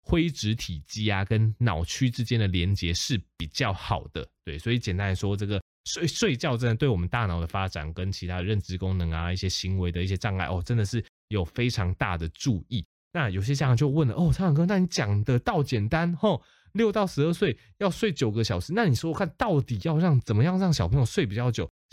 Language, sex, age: Chinese, male, 20-39